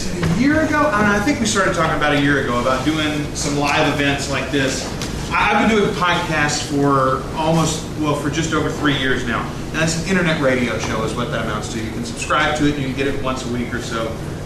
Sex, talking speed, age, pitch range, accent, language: male, 240 wpm, 30-49, 125-150 Hz, American, English